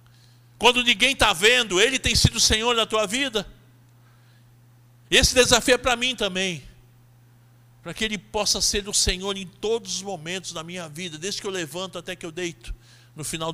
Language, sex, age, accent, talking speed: Portuguese, male, 50-69, Brazilian, 185 wpm